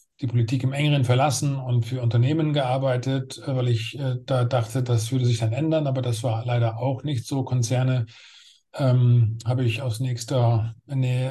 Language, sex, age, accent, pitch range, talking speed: German, male, 40-59, German, 115-135 Hz, 170 wpm